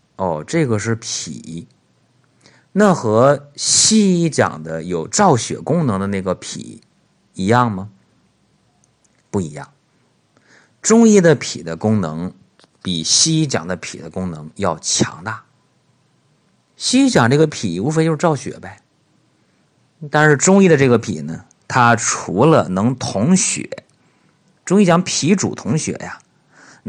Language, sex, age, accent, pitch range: Chinese, male, 50-69, native, 100-165 Hz